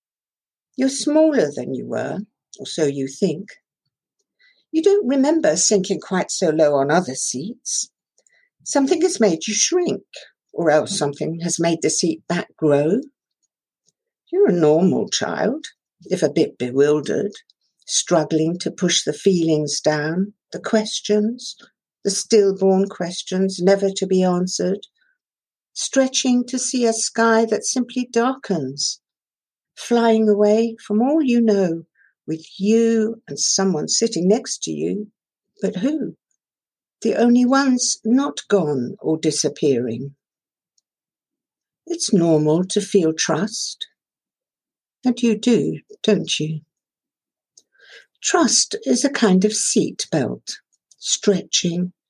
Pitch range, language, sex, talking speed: 165-245 Hz, English, female, 120 wpm